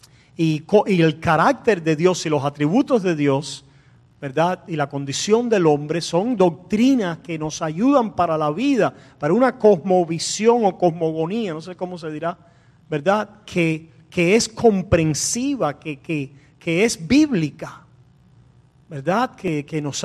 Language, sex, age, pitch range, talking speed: Spanish, male, 40-59, 145-200 Hz, 140 wpm